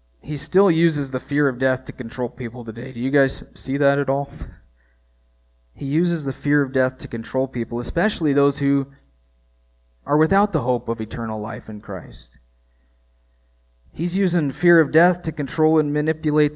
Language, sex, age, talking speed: English, male, 30-49, 175 wpm